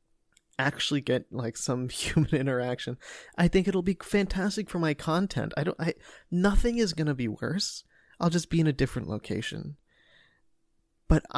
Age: 20-39